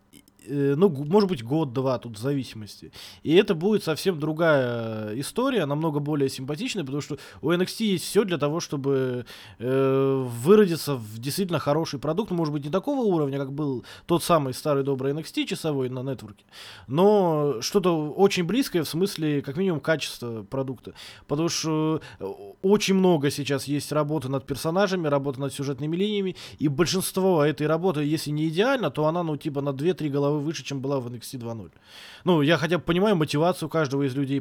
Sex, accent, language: male, native, Russian